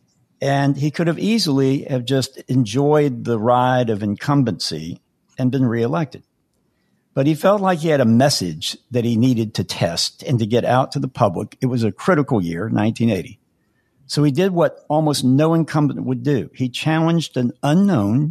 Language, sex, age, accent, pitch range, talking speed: English, male, 60-79, American, 115-145 Hz, 175 wpm